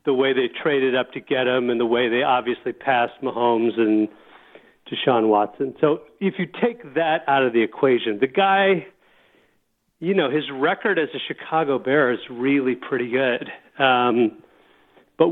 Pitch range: 125-160 Hz